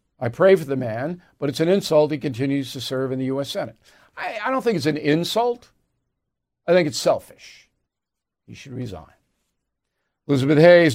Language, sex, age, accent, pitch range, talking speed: English, male, 50-69, American, 150-195 Hz, 180 wpm